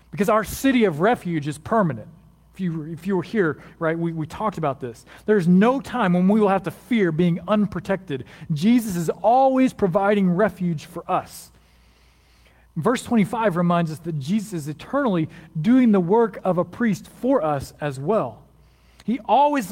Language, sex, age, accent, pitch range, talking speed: English, male, 40-59, American, 150-210 Hz, 170 wpm